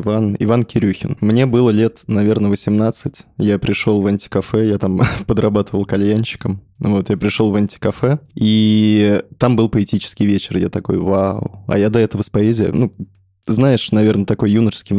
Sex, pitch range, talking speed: male, 100-115 Hz, 155 wpm